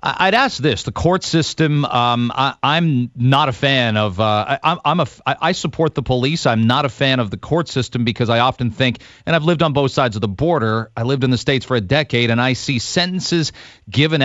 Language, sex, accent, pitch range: English, male, American, 120-150 Hz